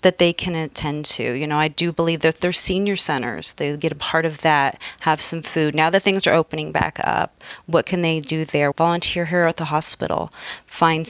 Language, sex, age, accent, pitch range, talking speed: English, female, 30-49, American, 155-195 Hz, 220 wpm